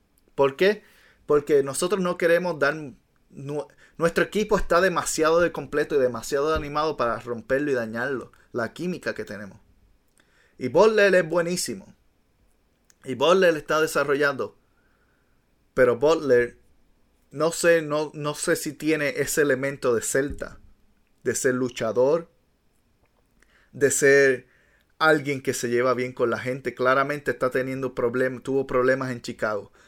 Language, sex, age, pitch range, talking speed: Spanish, male, 30-49, 120-155 Hz, 135 wpm